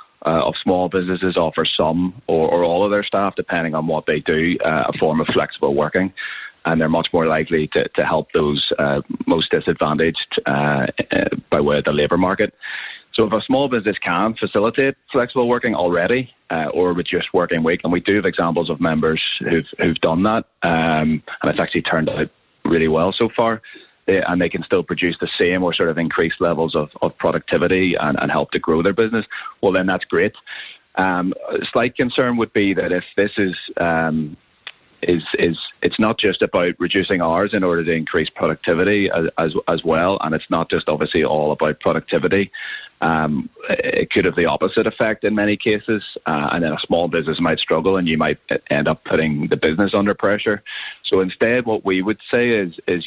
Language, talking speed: English, 195 wpm